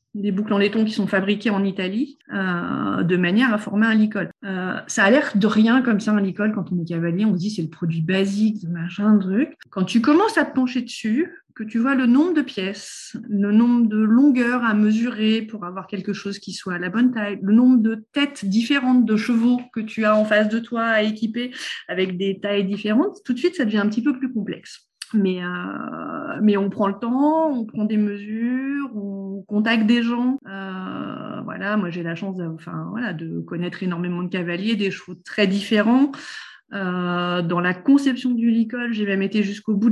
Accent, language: French, French